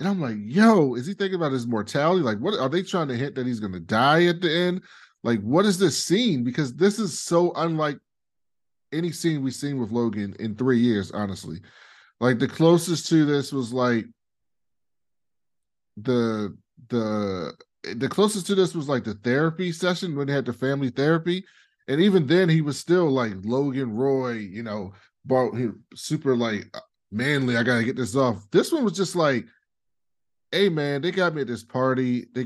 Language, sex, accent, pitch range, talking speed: English, male, American, 115-165 Hz, 190 wpm